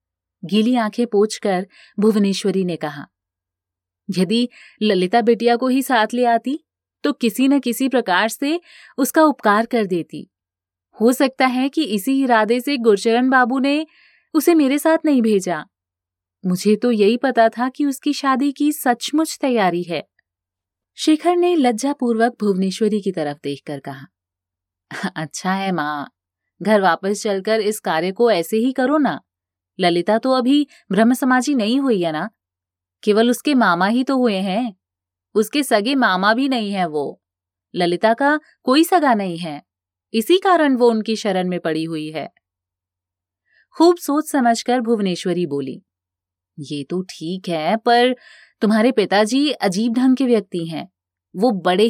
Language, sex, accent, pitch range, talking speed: Hindi, female, native, 160-255 Hz, 150 wpm